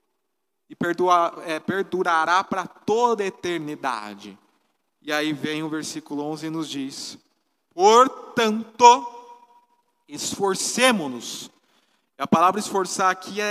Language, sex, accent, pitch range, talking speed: Portuguese, male, Brazilian, 165-240 Hz, 95 wpm